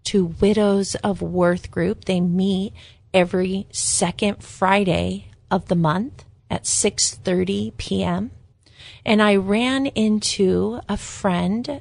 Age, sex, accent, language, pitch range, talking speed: 30-49, female, American, English, 170-200 Hz, 115 wpm